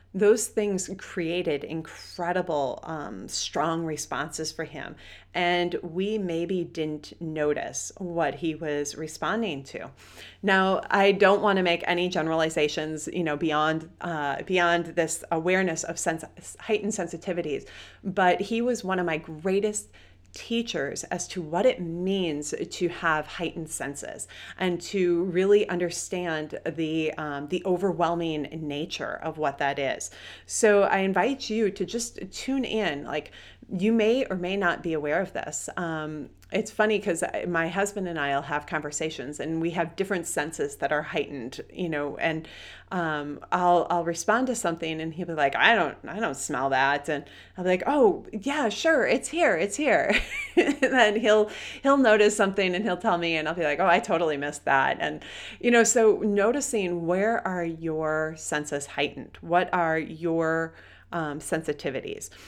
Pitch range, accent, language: 155-200 Hz, American, English